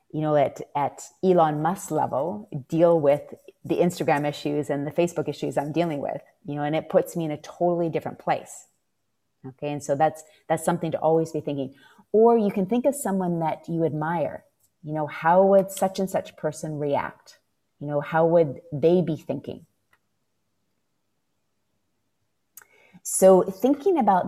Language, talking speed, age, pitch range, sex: English, 170 wpm, 30-49, 145-170 Hz, female